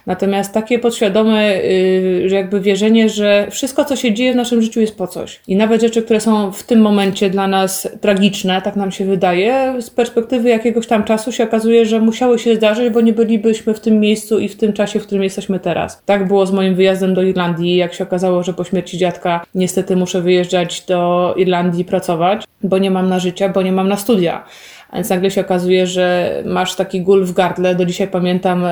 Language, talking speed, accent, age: Polish, 210 wpm, native, 20-39